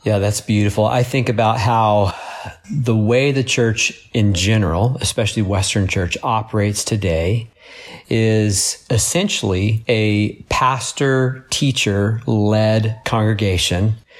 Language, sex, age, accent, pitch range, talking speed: English, male, 40-59, American, 100-120 Hz, 95 wpm